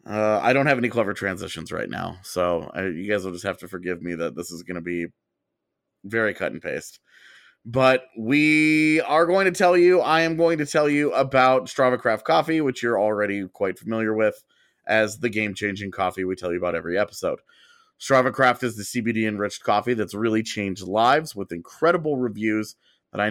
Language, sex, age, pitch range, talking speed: English, male, 30-49, 100-130 Hz, 195 wpm